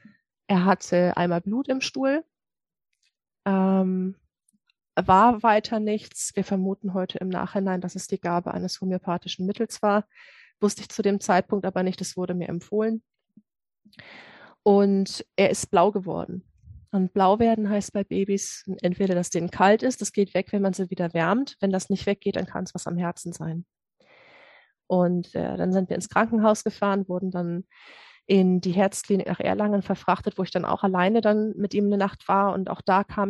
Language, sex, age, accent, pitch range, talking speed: German, female, 30-49, German, 185-210 Hz, 180 wpm